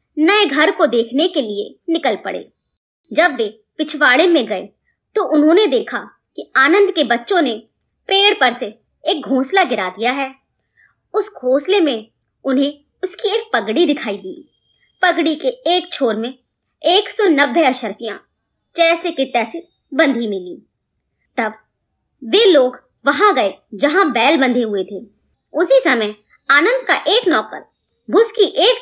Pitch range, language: 245-365 Hz, Hindi